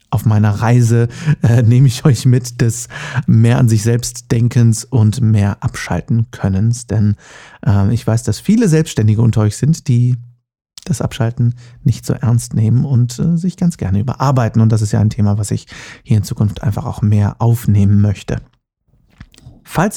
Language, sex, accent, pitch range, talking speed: German, male, German, 115-130 Hz, 175 wpm